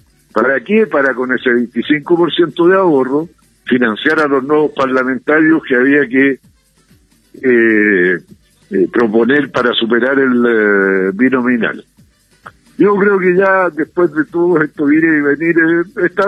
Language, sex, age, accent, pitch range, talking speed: Spanish, male, 60-79, Argentinian, 125-180 Hz, 135 wpm